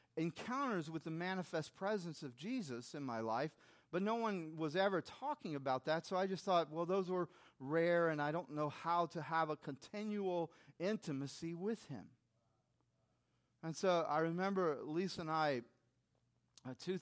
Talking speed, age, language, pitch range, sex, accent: 165 wpm, 40-59, English, 125-170 Hz, male, American